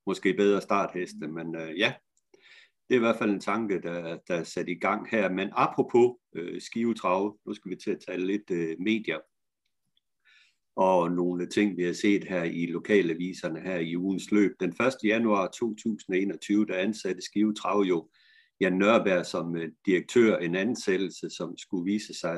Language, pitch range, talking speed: Danish, 90-115 Hz, 170 wpm